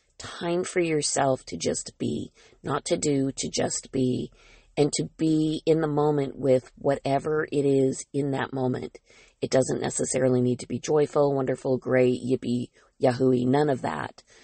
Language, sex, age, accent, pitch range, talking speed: English, female, 40-59, American, 130-145 Hz, 160 wpm